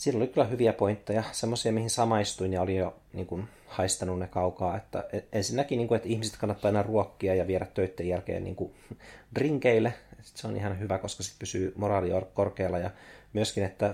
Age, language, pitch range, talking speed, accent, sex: 30-49, Finnish, 95-115 Hz, 160 wpm, native, male